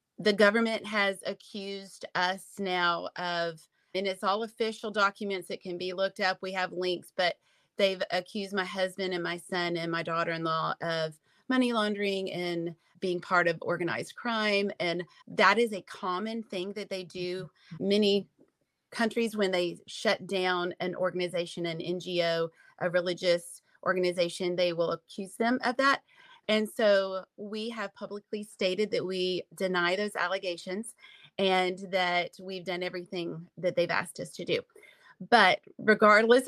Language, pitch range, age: English, 180-210 Hz, 30-49